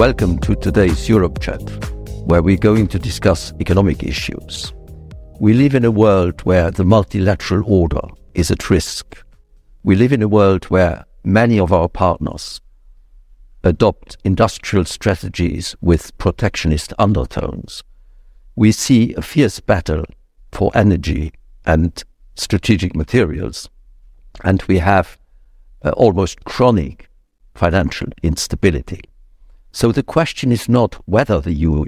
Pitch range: 80-105 Hz